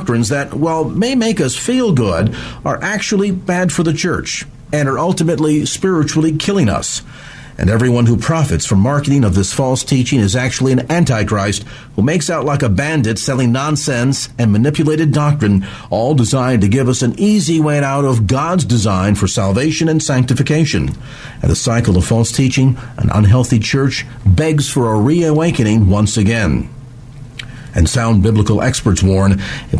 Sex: male